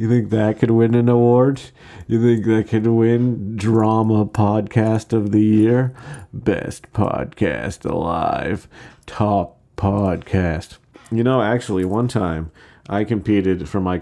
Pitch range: 95-115 Hz